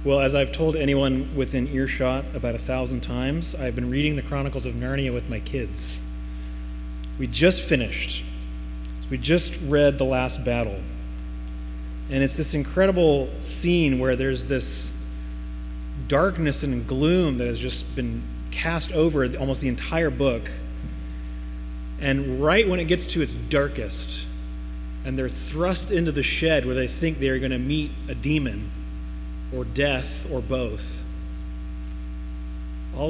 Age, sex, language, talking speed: 30-49, male, English, 145 wpm